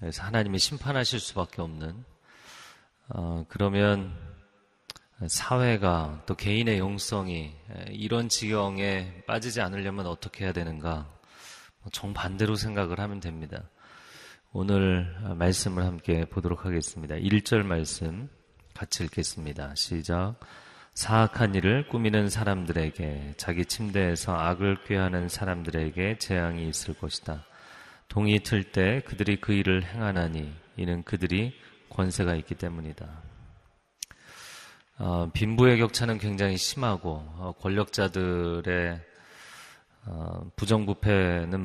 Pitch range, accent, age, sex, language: 85-105 Hz, native, 30-49, male, Korean